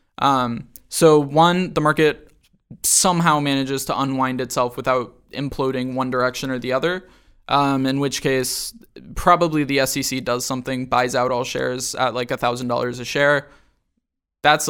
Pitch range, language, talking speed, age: 130-150 Hz, English, 150 wpm, 20-39